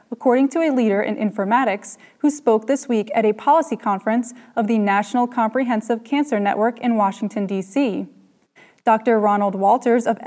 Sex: female